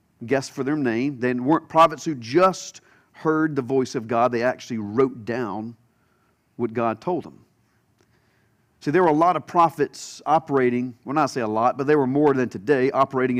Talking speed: 195 wpm